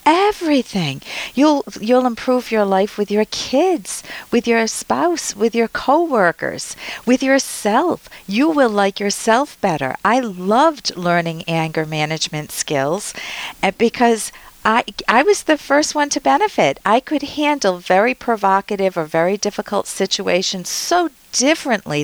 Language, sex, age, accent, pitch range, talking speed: English, female, 50-69, American, 170-240 Hz, 130 wpm